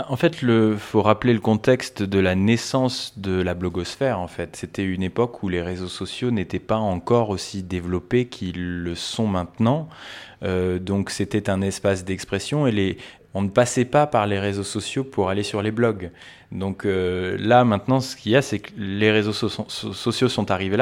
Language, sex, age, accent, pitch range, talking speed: French, male, 20-39, French, 100-130 Hz, 190 wpm